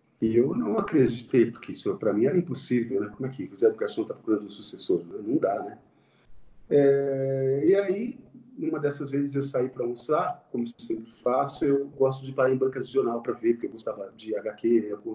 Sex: male